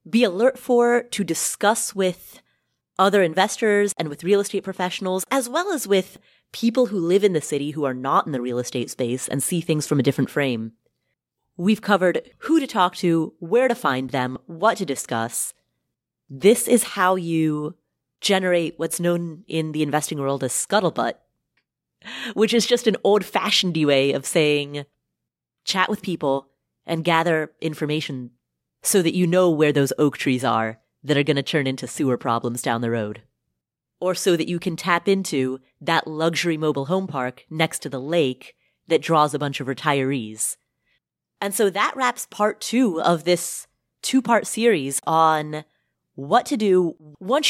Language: English